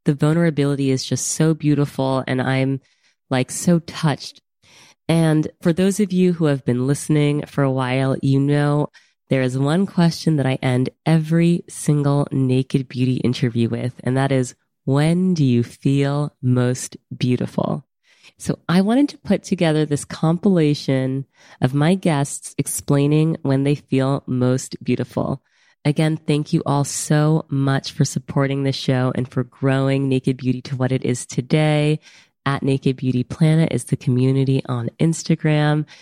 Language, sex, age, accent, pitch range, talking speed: English, female, 20-39, American, 130-155 Hz, 155 wpm